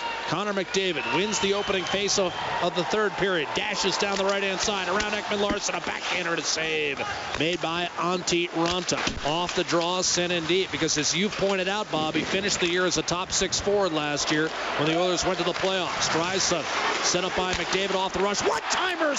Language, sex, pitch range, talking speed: English, male, 190-305 Hz, 205 wpm